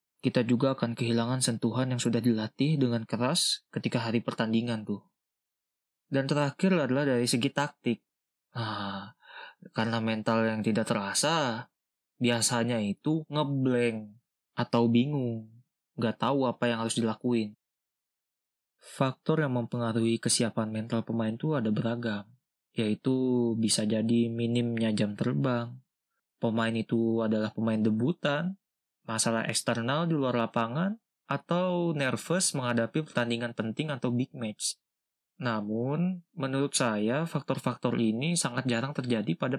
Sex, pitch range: male, 115-140 Hz